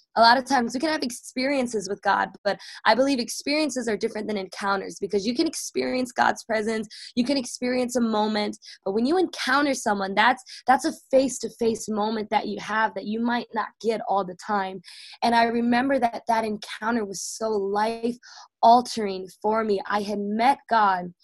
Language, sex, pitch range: English, female, 205-240 Hz